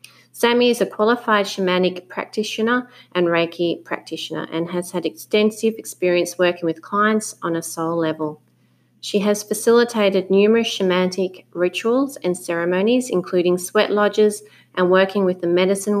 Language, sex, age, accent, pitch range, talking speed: English, female, 30-49, Australian, 165-205 Hz, 140 wpm